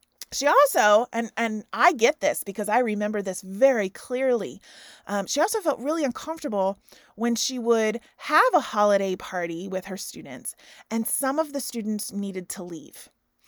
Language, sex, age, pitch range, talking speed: English, female, 30-49, 195-245 Hz, 165 wpm